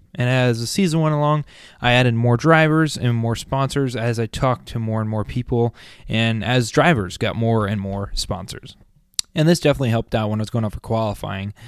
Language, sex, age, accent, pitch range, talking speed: English, male, 20-39, American, 115-150 Hz, 210 wpm